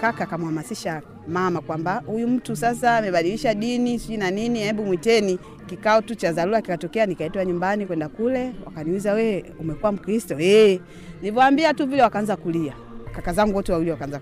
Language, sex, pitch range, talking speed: Swahili, female, 165-240 Hz, 160 wpm